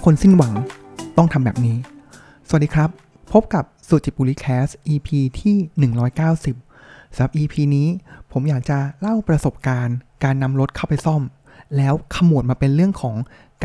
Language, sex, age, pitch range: Thai, male, 20-39, 130-160 Hz